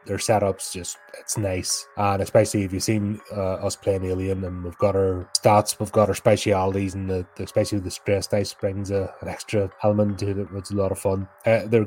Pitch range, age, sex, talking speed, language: 95-110 Hz, 20-39, male, 230 wpm, English